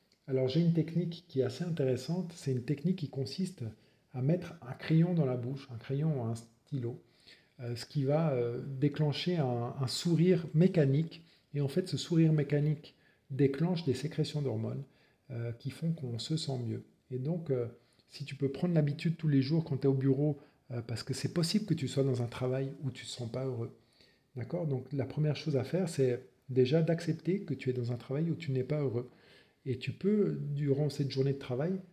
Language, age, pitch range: French, 40-59, 125-155 Hz